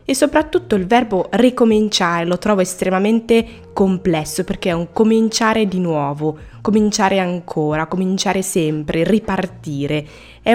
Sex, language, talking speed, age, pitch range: female, Italian, 120 wpm, 20-39, 160-200 Hz